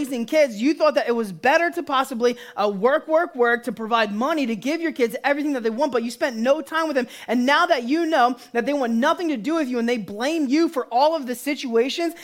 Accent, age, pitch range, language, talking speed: American, 20-39, 240-310 Hz, English, 260 wpm